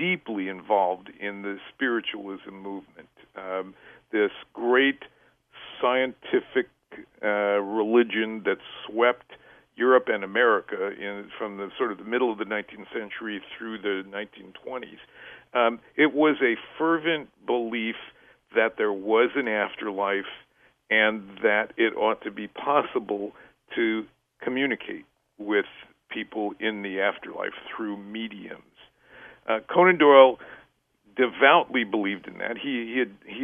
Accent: American